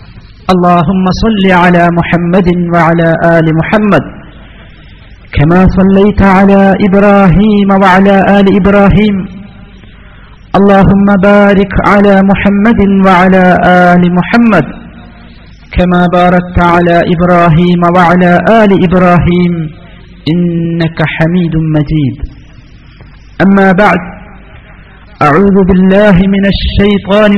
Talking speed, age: 80 wpm, 50-69